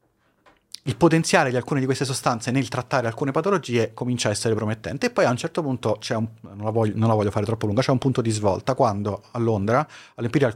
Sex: male